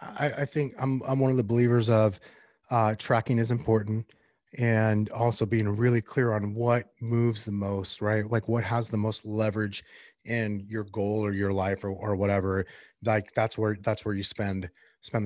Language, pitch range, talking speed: English, 105-120 Hz, 190 wpm